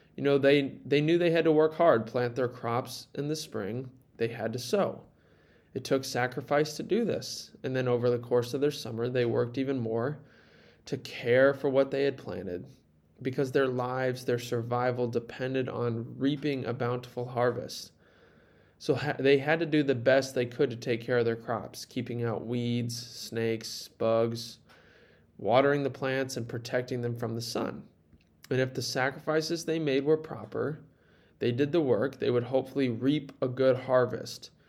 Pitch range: 120-140 Hz